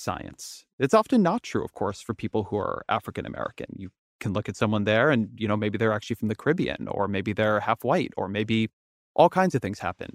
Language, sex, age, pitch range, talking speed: English, male, 30-49, 105-130 Hz, 230 wpm